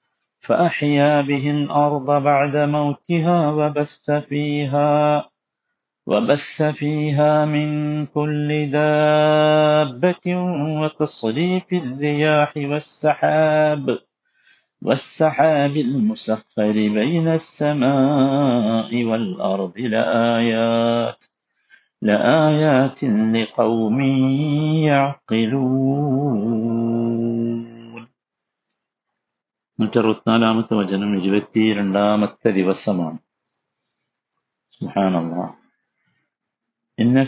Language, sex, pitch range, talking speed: Malayalam, male, 110-150 Hz, 55 wpm